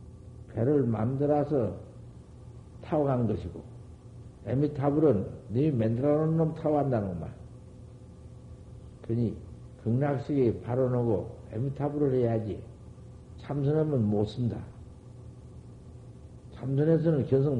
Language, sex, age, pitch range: Korean, male, 60-79, 105-135 Hz